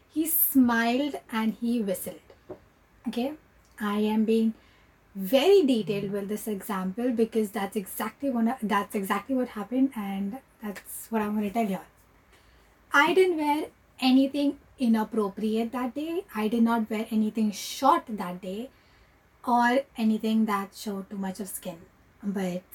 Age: 20-39